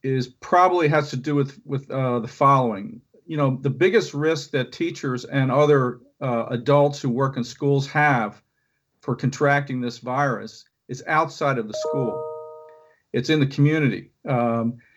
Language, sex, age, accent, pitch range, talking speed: English, male, 50-69, American, 125-150 Hz, 160 wpm